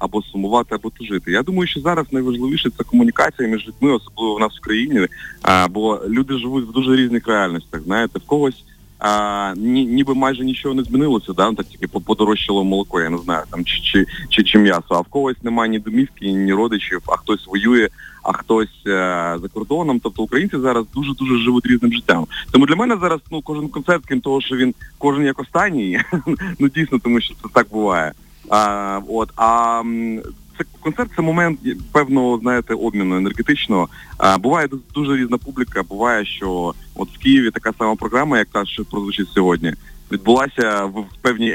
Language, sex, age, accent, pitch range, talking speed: Ukrainian, male, 30-49, native, 105-135 Hz, 185 wpm